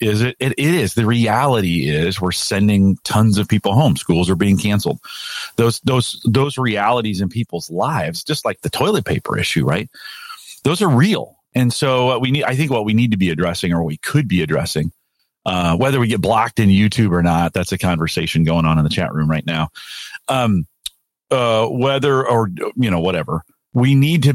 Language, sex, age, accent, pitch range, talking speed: English, male, 40-59, American, 90-125 Hz, 200 wpm